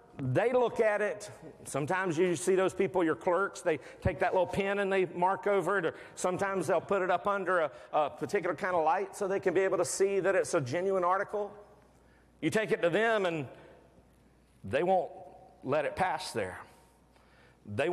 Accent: American